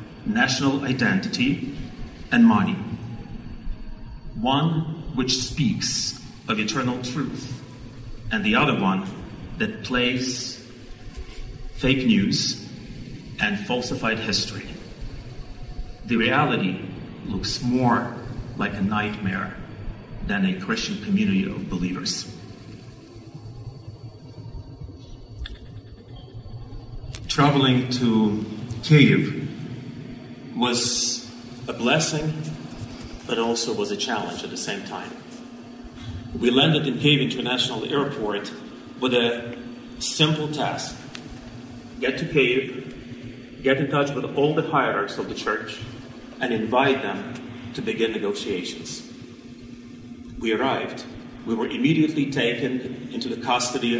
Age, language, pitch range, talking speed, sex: 40-59, Ukrainian, 115-135 Hz, 95 wpm, male